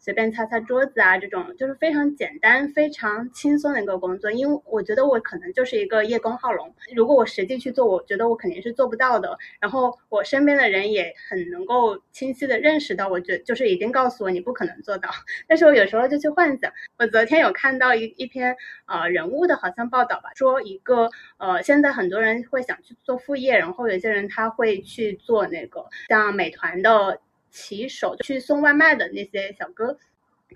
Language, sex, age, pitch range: Chinese, female, 20-39, 225-295 Hz